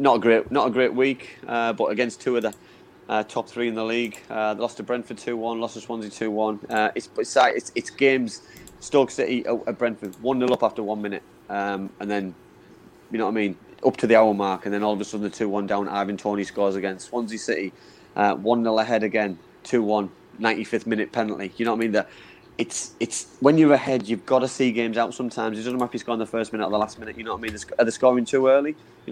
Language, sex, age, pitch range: English, male, 20-39, 105-125 Hz